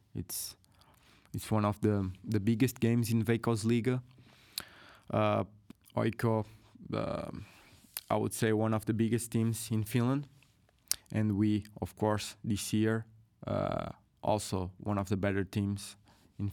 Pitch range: 95-110 Hz